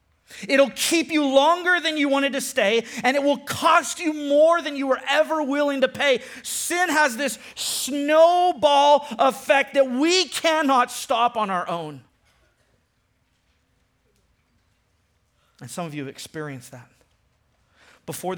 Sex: male